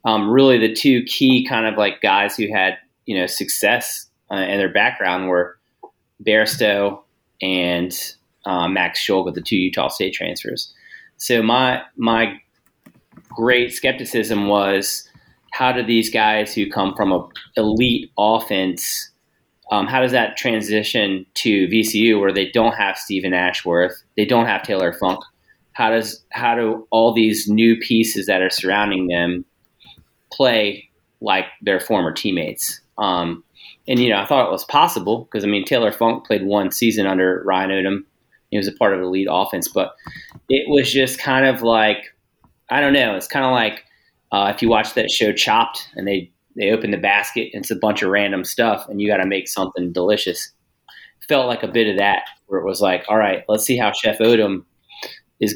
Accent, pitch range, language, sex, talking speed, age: American, 95-115 Hz, English, male, 185 wpm, 30-49